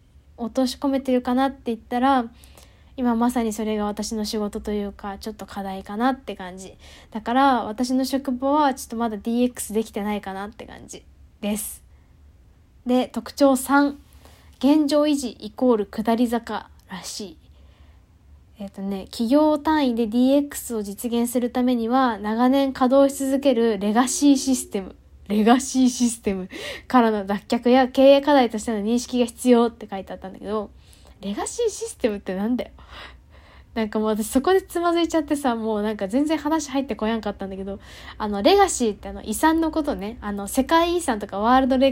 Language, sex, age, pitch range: Japanese, female, 10-29, 210-275 Hz